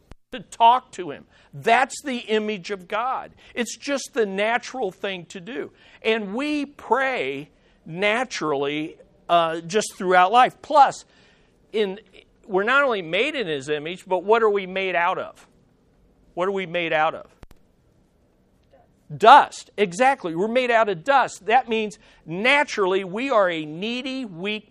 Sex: male